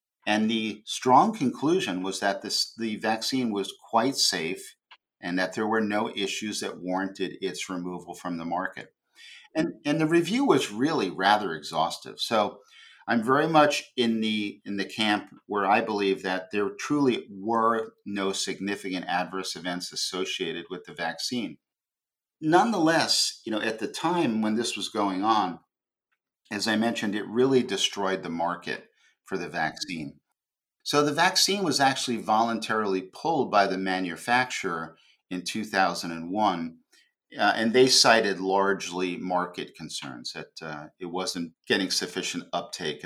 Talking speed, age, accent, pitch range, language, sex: 145 wpm, 50-69, American, 95-125 Hz, English, male